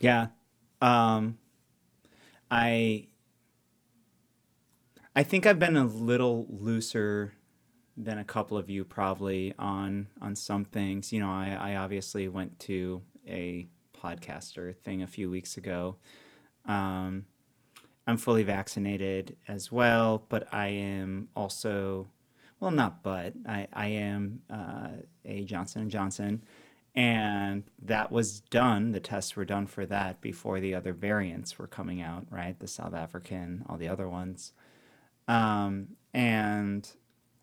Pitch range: 95-115 Hz